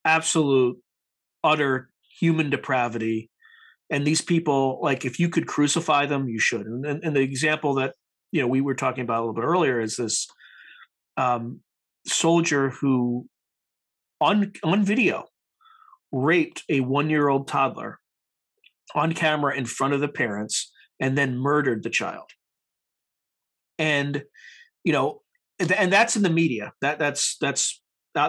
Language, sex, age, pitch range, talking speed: English, male, 40-59, 130-160 Hz, 140 wpm